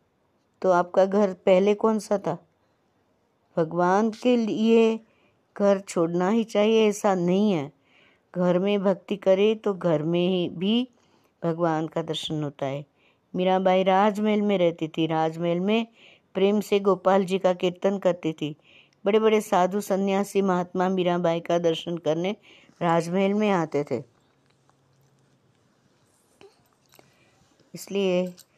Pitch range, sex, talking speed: 165-195 Hz, female, 125 wpm